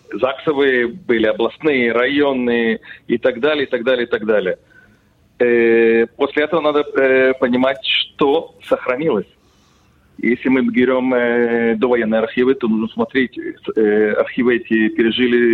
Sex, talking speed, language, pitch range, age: male, 130 wpm, English, 115-145 Hz, 40-59